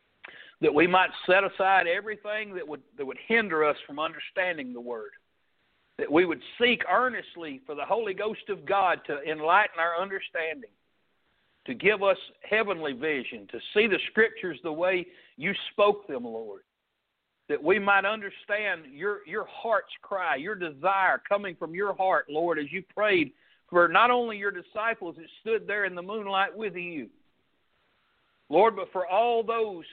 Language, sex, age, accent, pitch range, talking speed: English, male, 60-79, American, 175-225 Hz, 165 wpm